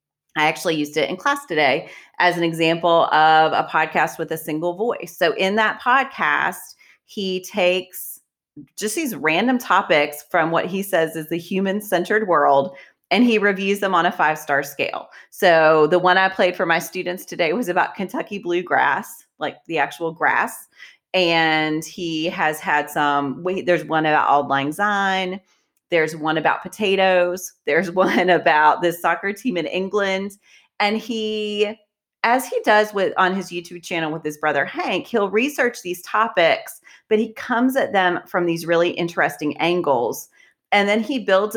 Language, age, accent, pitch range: English, 30-49, American, 160-205 Hz